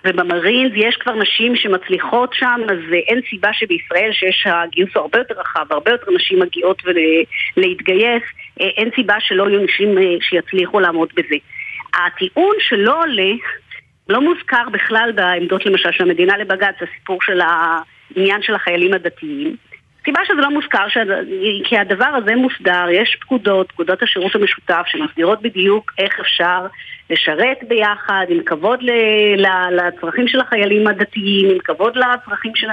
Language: Hebrew